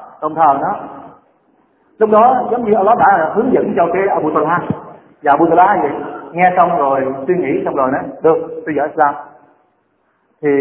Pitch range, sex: 155-195 Hz, male